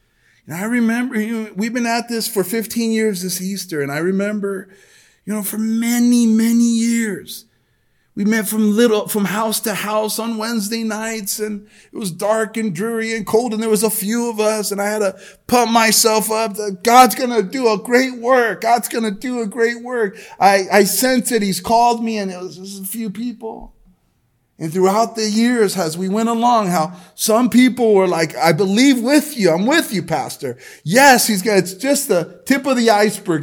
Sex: male